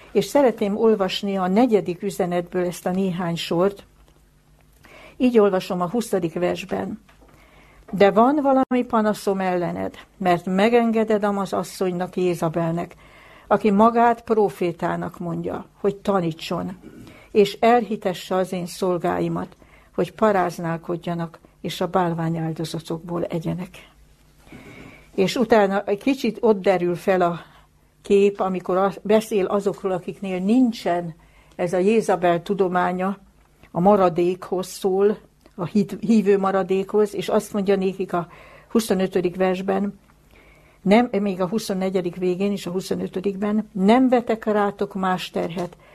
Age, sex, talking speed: 60-79, female, 115 wpm